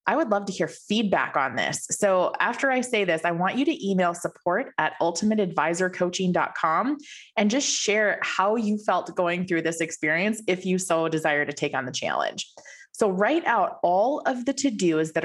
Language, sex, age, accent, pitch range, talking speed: English, female, 20-39, American, 165-230 Hz, 190 wpm